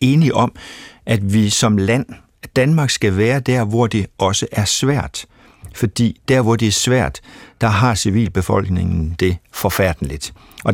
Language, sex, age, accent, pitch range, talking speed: Danish, male, 60-79, native, 95-120 Hz, 150 wpm